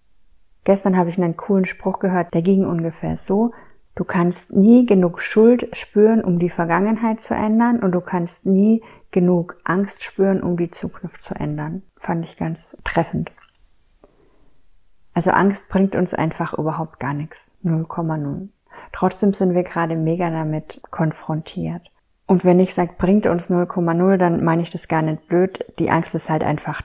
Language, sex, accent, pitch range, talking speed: German, female, German, 160-190 Hz, 165 wpm